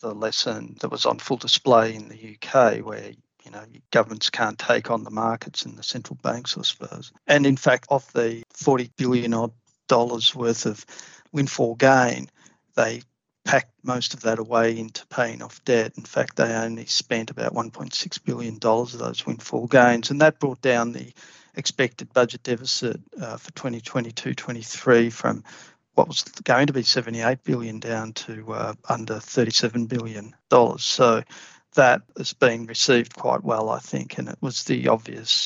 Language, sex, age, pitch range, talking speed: English, male, 50-69, 115-130 Hz, 165 wpm